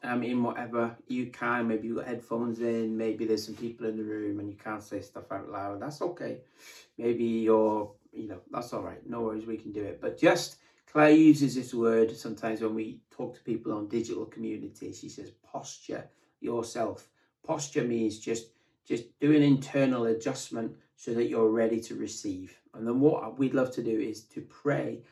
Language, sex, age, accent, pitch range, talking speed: English, male, 30-49, British, 115-140 Hz, 195 wpm